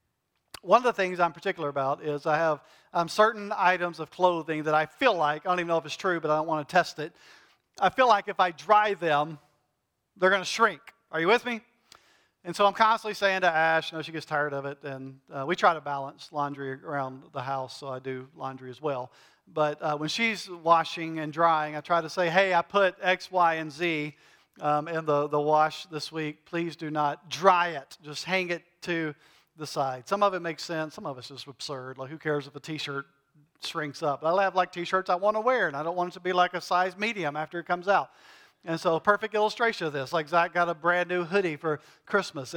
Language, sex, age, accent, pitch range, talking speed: English, male, 40-59, American, 155-190 Hz, 240 wpm